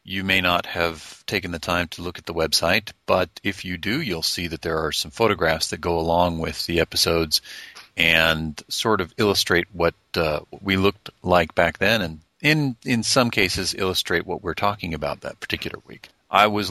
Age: 40-59